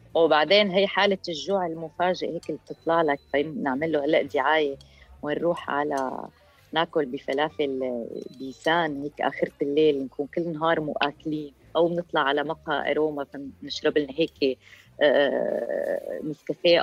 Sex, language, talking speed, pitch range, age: female, Arabic, 115 wpm, 145-180 Hz, 20-39